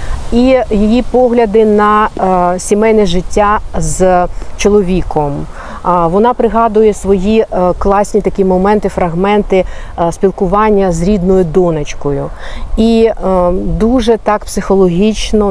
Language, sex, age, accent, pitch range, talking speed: Ukrainian, female, 40-59, native, 180-220 Hz, 90 wpm